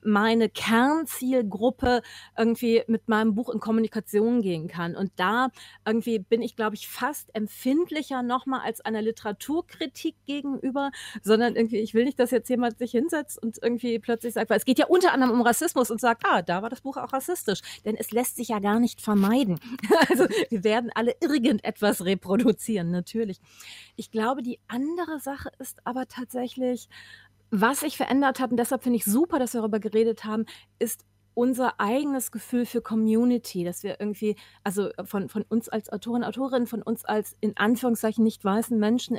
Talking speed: 180 wpm